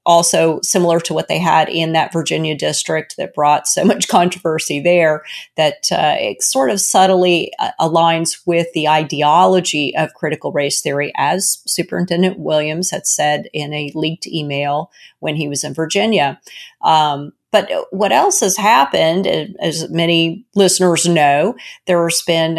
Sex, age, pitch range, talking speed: female, 40-59, 155-180 Hz, 150 wpm